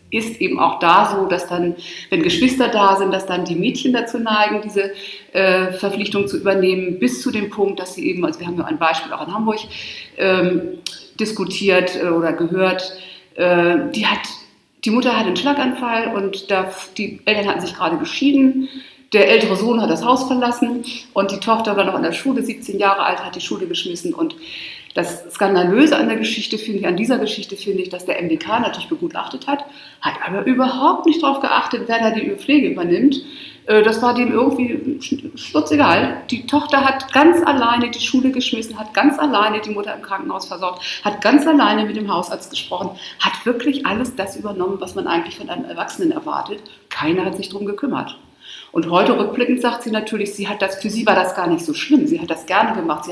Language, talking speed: German, 200 wpm